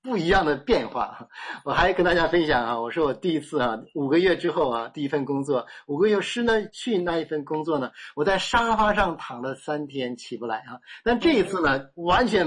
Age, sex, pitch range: 50-69, male, 125-165 Hz